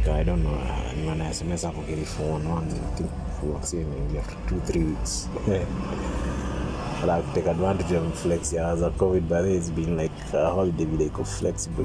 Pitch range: 80-95 Hz